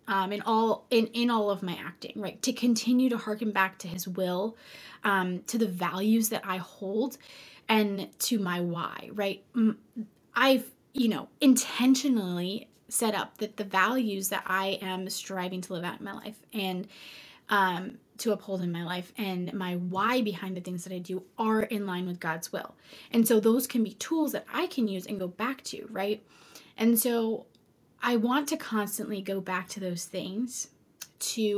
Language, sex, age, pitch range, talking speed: English, female, 20-39, 190-225 Hz, 185 wpm